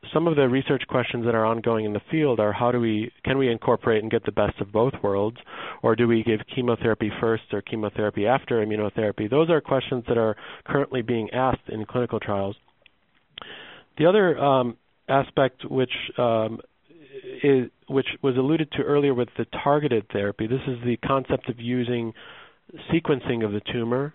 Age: 40-59